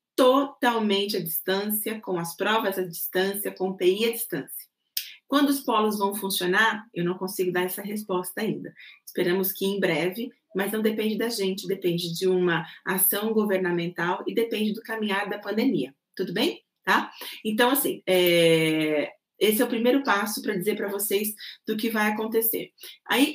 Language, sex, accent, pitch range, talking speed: Portuguese, female, Brazilian, 180-220 Hz, 160 wpm